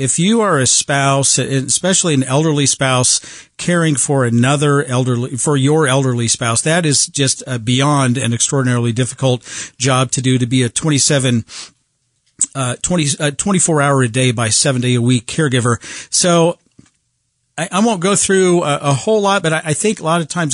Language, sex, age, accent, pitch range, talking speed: English, male, 50-69, American, 125-155 Hz, 180 wpm